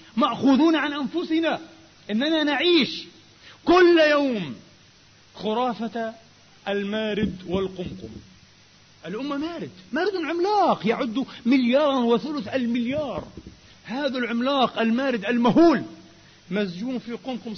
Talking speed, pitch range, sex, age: 85 wpm, 200-285 Hz, male, 40-59